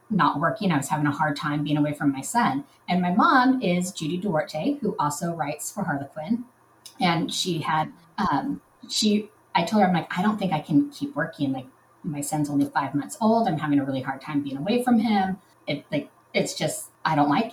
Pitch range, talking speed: 150-230 Hz, 225 wpm